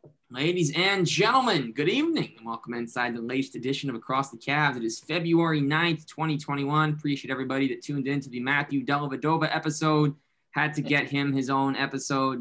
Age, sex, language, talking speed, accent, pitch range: 20-39, male, English, 180 wpm, American, 125-165 Hz